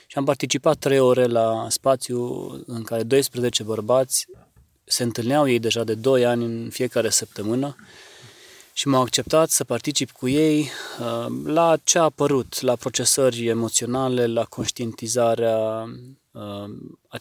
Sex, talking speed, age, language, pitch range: male, 130 wpm, 20-39, Romanian, 110-125 Hz